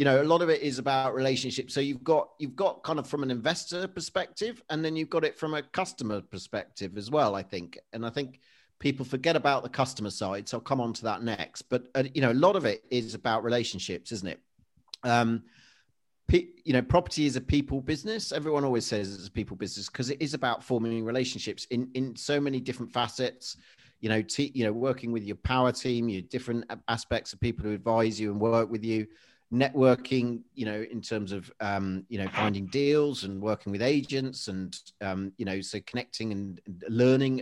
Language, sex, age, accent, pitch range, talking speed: English, male, 40-59, British, 105-135 Hz, 215 wpm